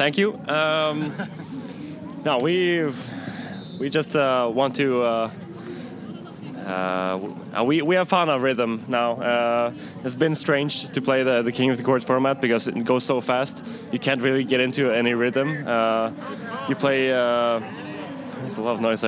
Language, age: English, 20-39